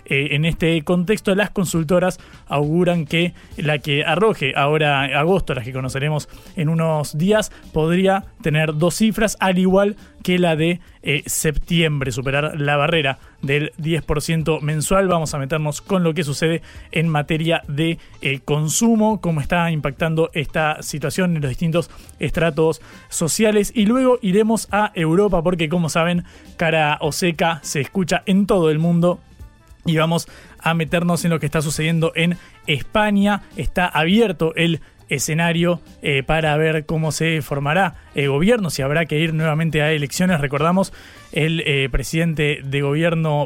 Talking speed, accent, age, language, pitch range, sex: 155 wpm, Argentinian, 20-39, Spanish, 145-175 Hz, male